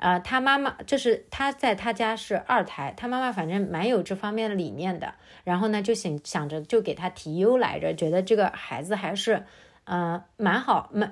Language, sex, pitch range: Chinese, female, 180-260 Hz